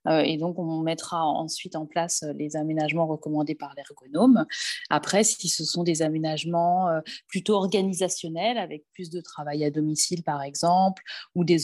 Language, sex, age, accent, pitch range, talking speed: French, female, 20-39, French, 160-225 Hz, 155 wpm